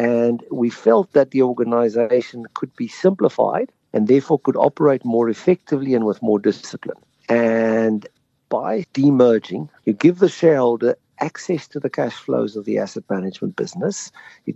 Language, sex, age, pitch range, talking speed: English, male, 60-79, 110-145 Hz, 155 wpm